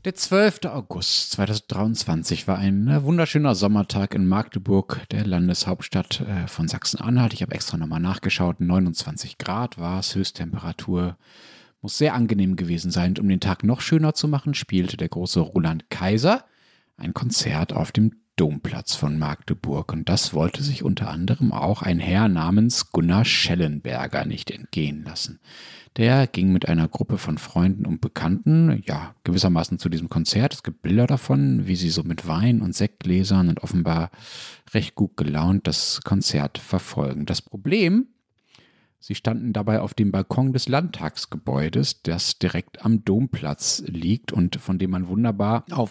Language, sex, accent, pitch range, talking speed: German, male, German, 85-115 Hz, 155 wpm